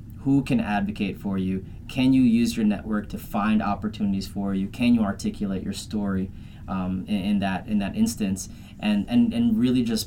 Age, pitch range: 20-39, 100-140 Hz